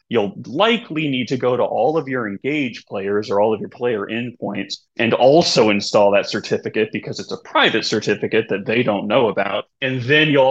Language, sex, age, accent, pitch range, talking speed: English, male, 20-39, American, 105-140 Hz, 200 wpm